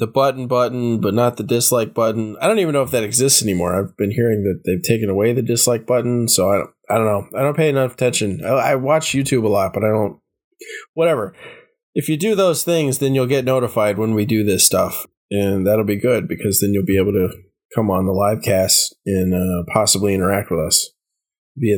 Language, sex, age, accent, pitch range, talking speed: English, male, 20-39, American, 105-135 Hz, 230 wpm